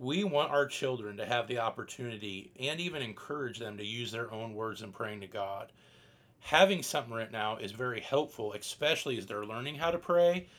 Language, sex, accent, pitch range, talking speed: English, male, American, 120-155 Hz, 200 wpm